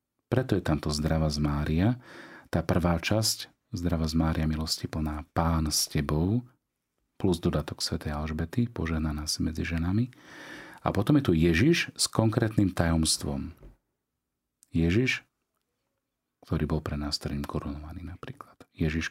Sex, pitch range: male, 80-105 Hz